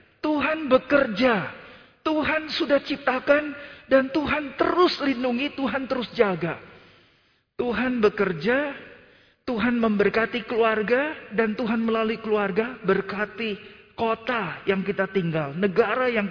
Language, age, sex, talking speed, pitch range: Indonesian, 40-59, male, 105 wpm, 155-230 Hz